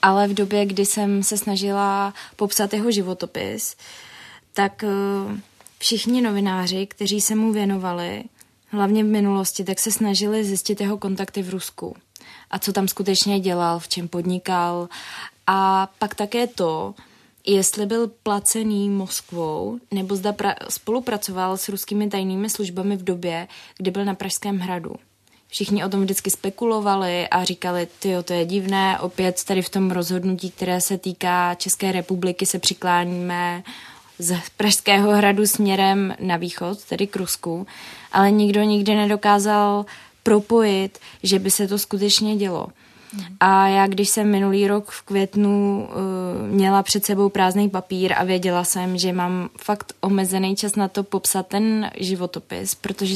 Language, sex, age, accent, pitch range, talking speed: Czech, female, 20-39, native, 185-205 Hz, 145 wpm